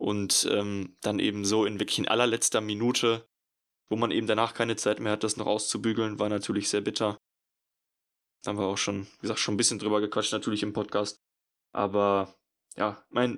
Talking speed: 195 wpm